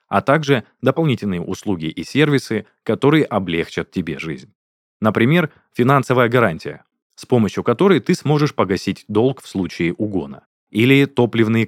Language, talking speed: Russian, 130 wpm